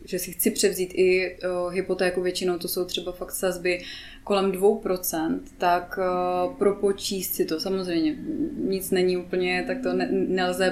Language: Czech